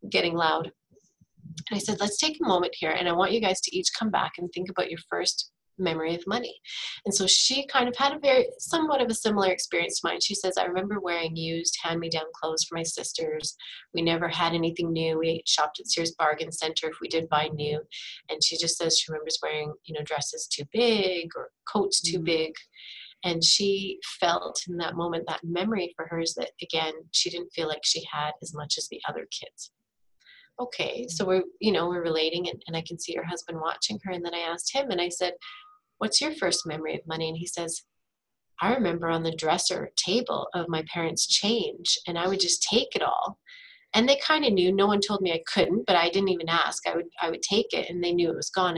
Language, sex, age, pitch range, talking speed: English, female, 30-49, 160-200 Hz, 230 wpm